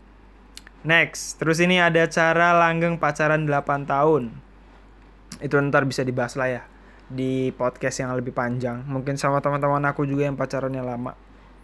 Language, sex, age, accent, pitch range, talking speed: Indonesian, male, 20-39, native, 140-165 Hz, 145 wpm